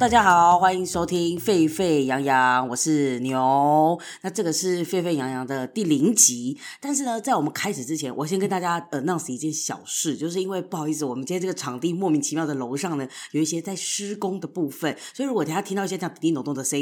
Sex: female